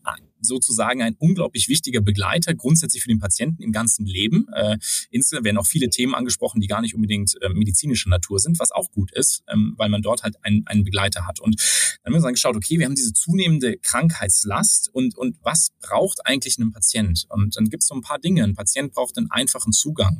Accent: German